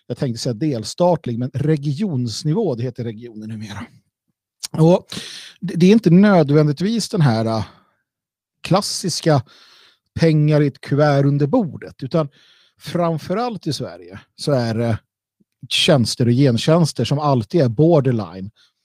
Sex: male